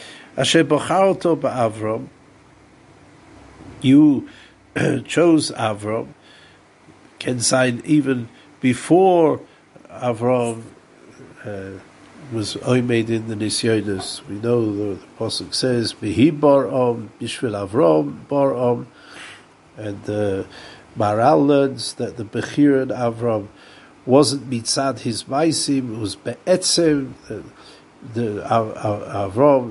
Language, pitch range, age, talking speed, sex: English, 110-145 Hz, 60-79, 95 wpm, male